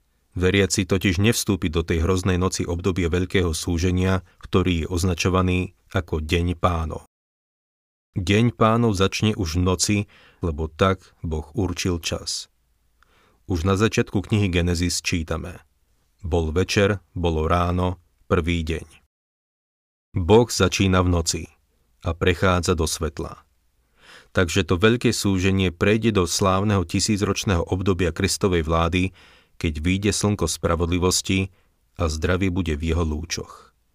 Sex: male